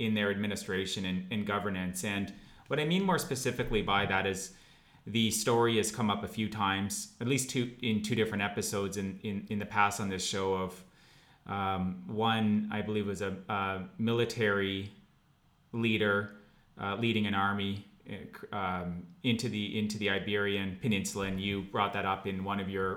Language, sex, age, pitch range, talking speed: English, male, 30-49, 100-115 Hz, 180 wpm